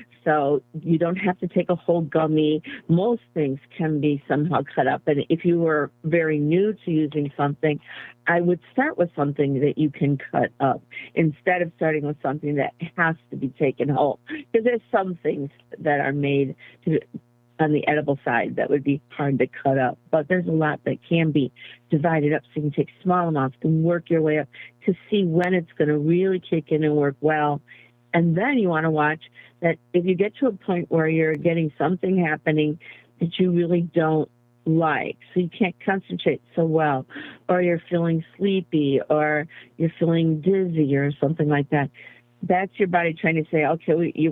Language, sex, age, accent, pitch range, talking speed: English, female, 50-69, American, 145-170 Hz, 195 wpm